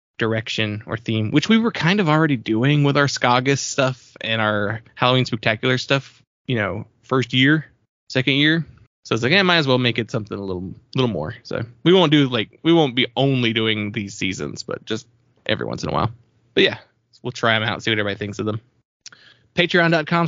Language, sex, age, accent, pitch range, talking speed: English, male, 20-39, American, 115-145 Hz, 215 wpm